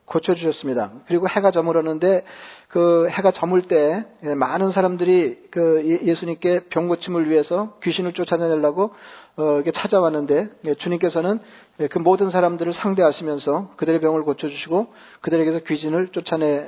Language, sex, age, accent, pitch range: Korean, male, 40-59, native, 155-185 Hz